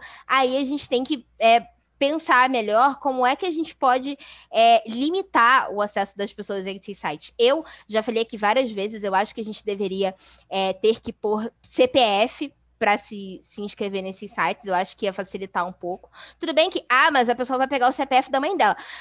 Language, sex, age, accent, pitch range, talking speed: Portuguese, female, 20-39, Brazilian, 210-275 Hz, 200 wpm